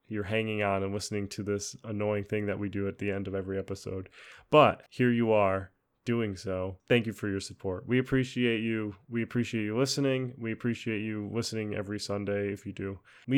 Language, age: English, 20-39